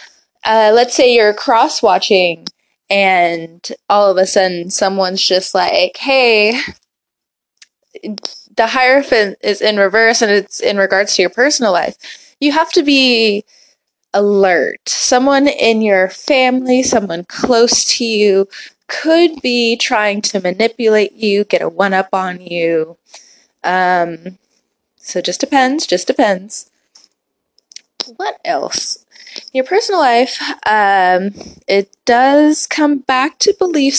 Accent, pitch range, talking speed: American, 195-275 Hz, 125 wpm